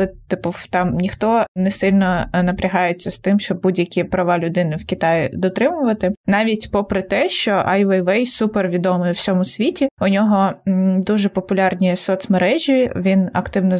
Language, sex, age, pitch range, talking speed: Ukrainian, female, 20-39, 185-215 Hz, 135 wpm